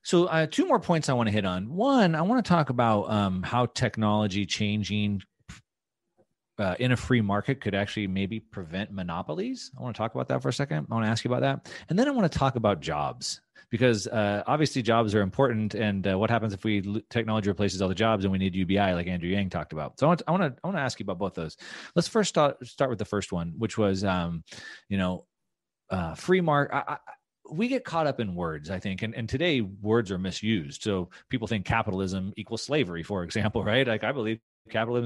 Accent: American